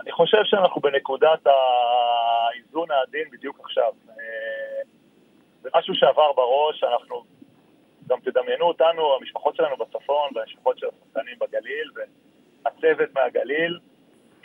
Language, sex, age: Hebrew, male, 30-49